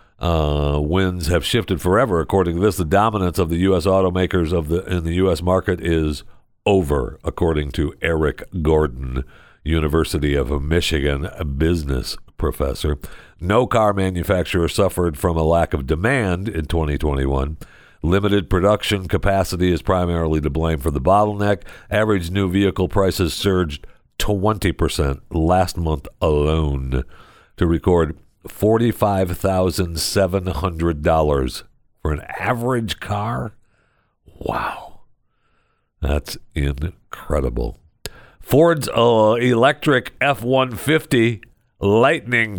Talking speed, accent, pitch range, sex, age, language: 110 wpm, American, 80-115 Hz, male, 60-79, English